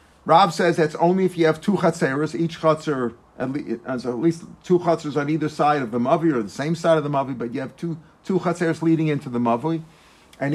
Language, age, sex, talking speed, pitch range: English, 50-69, male, 235 wpm, 130-165 Hz